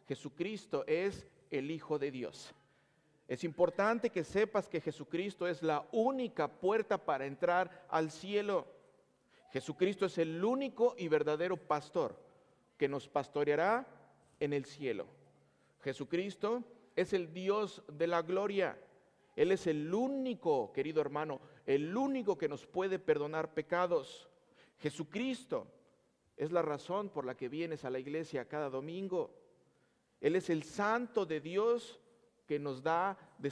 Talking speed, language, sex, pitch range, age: 135 wpm, Spanish, male, 150-220 Hz, 40-59